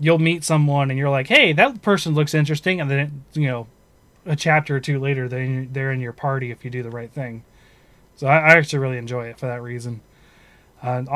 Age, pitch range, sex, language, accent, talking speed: 20-39, 120-145 Hz, male, English, American, 215 wpm